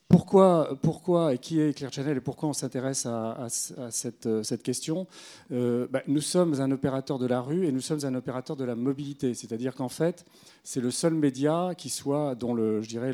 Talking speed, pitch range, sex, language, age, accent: 220 wpm, 115-145 Hz, male, French, 40-59, French